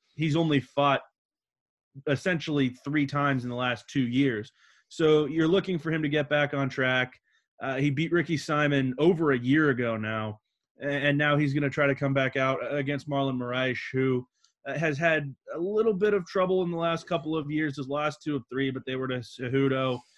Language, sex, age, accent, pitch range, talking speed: English, male, 20-39, American, 130-150 Hz, 200 wpm